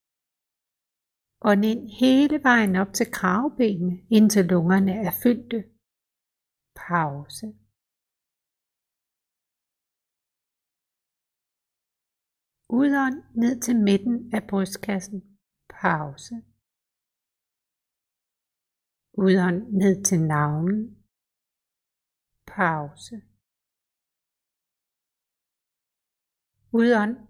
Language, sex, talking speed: Danish, female, 55 wpm